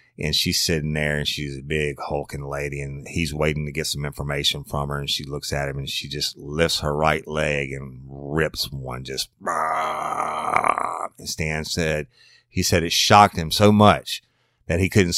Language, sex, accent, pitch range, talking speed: English, male, American, 75-100 Hz, 190 wpm